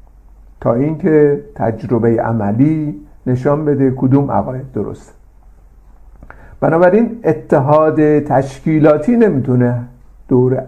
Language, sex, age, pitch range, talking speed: Persian, male, 50-69, 125-185 Hz, 80 wpm